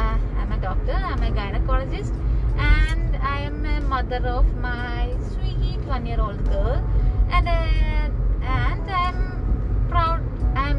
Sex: female